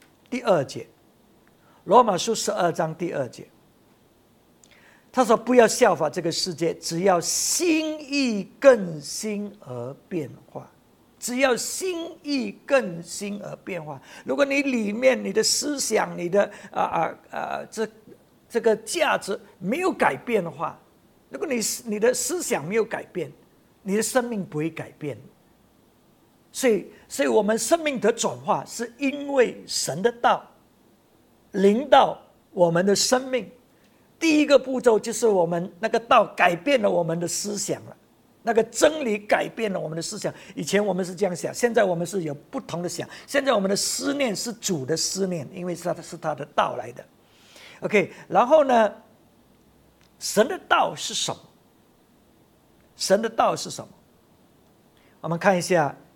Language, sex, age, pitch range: English, male, 50-69, 175-250 Hz